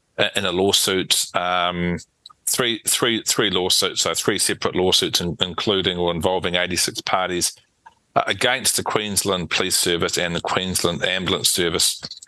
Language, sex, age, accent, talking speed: English, male, 40-59, Australian, 135 wpm